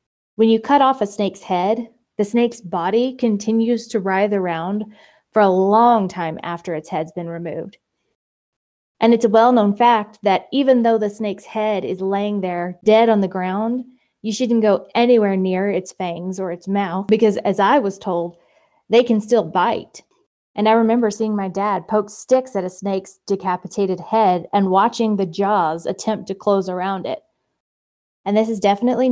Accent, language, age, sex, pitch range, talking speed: American, English, 20-39, female, 190-225 Hz, 175 wpm